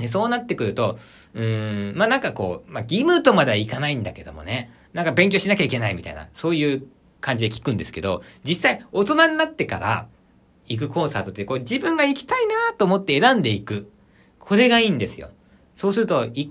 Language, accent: Japanese, native